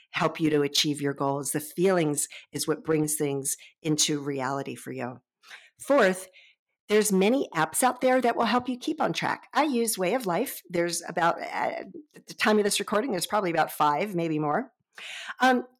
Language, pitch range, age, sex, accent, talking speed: English, 175-240 Hz, 50-69, female, American, 185 wpm